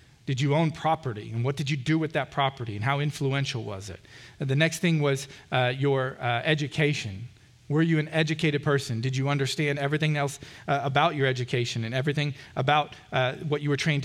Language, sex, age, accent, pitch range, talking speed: English, male, 40-59, American, 135-180 Hz, 200 wpm